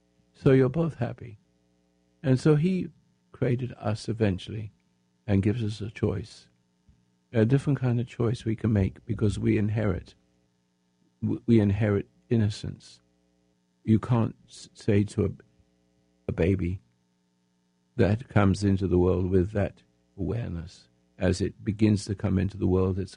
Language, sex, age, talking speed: English, male, 60-79, 135 wpm